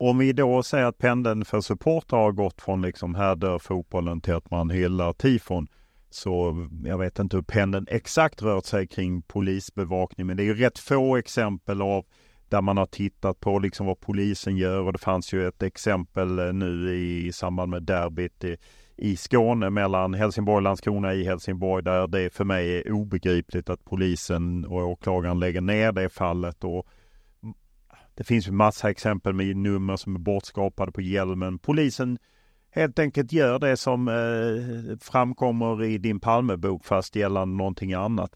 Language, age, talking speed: Swedish, 40-59, 170 wpm